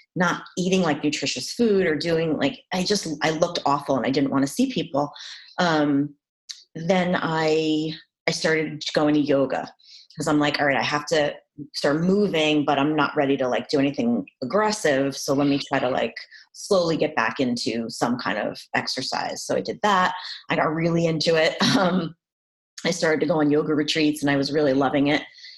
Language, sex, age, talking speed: English, female, 30-49, 195 wpm